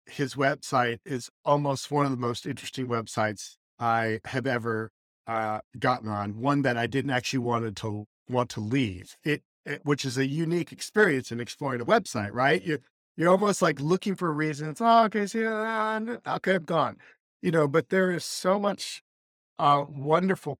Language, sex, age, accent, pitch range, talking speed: English, male, 50-69, American, 125-165 Hz, 185 wpm